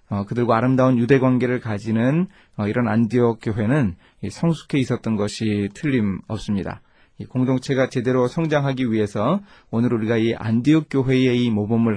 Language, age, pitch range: Korean, 30-49, 105-145 Hz